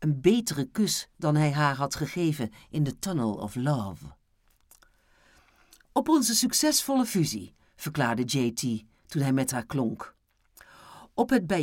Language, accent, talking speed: Dutch, Dutch, 140 wpm